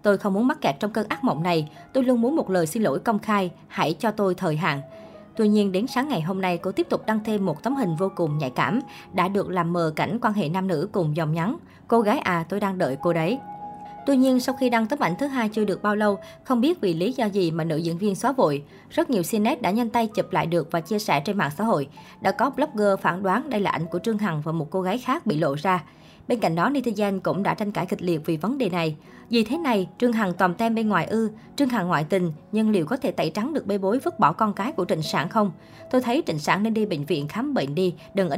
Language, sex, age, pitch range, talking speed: Vietnamese, male, 20-39, 175-230 Hz, 285 wpm